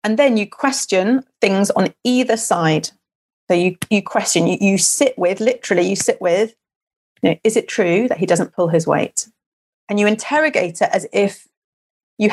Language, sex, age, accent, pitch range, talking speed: English, female, 30-49, British, 175-255 Hz, 185 wpm